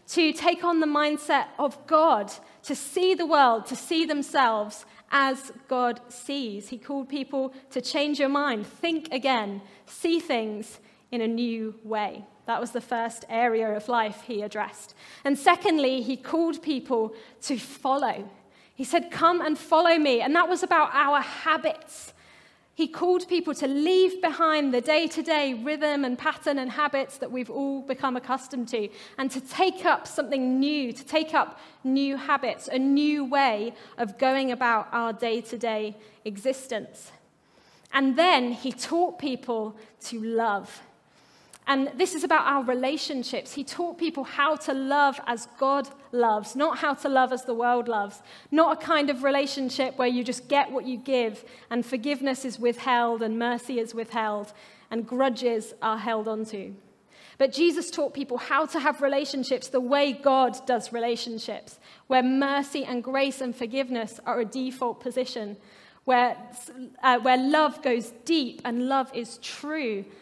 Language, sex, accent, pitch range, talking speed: English, female, British, 235-290 Hz, 160 wpm